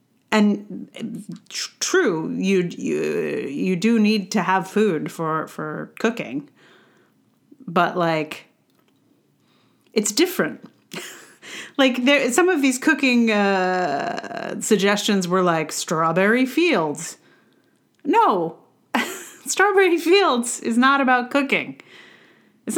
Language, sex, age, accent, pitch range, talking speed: English, female, 40-59, American, 170-255 Hz, 100 wpm